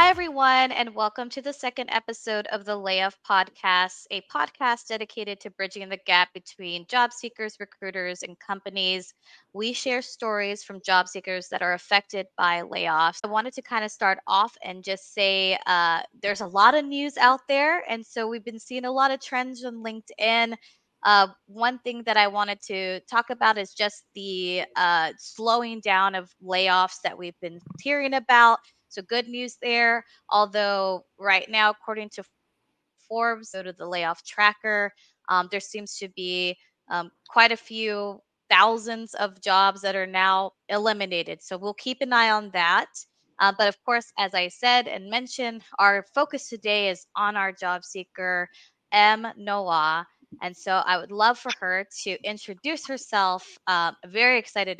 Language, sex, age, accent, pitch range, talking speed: English, female, 20-39, American, 185-230 Hz, 175 wpm